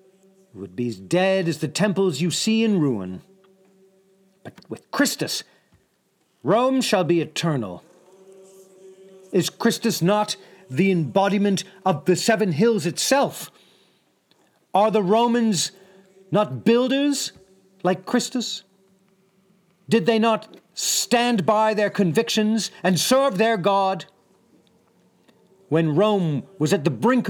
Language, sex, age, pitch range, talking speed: English, male, 40-59, 155-200 Hz, 115 wpm